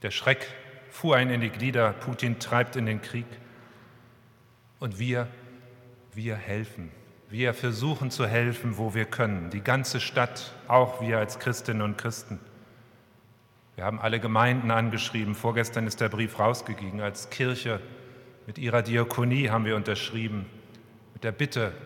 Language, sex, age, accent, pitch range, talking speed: German, male, 40-59, German, 110-125 Hz, 145 wpm